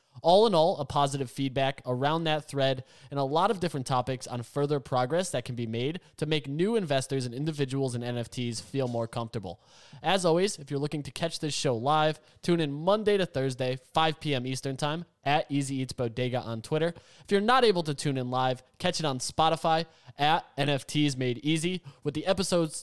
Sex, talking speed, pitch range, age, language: male, 200 wpm, 140-195 Hz, 20-39, English